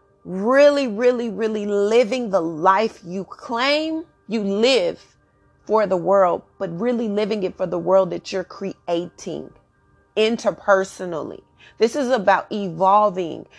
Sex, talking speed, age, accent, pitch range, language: female, 125 wpm, 30-49, American, 190-250 Hz, English